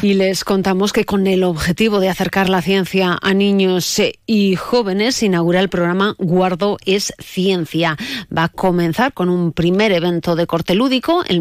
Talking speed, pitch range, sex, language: 175 wpm, 170-210 Hz, female, Spanish